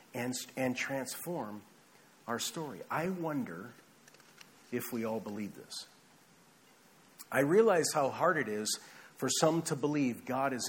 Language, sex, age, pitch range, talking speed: English, male, 50-69, 120-160 Hz, 135 wpm